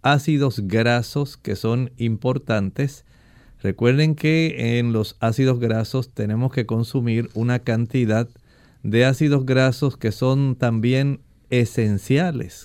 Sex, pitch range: male, 115-140 Hz